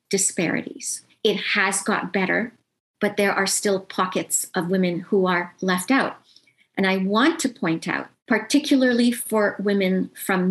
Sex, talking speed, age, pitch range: female, 150 wpm, 40-59, 185-215 Hz